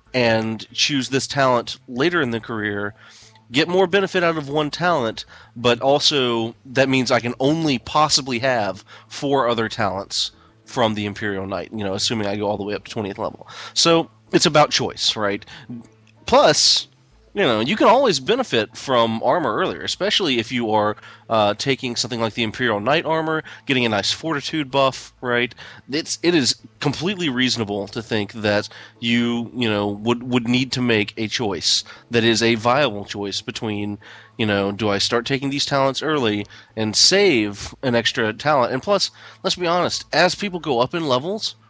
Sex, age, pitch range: male, 30-49, 110-140 Hz